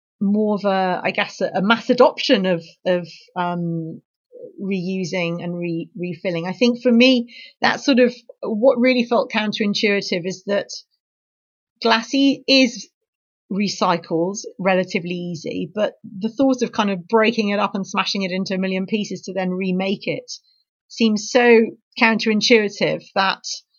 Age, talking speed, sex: 40-59, 145 wpm, female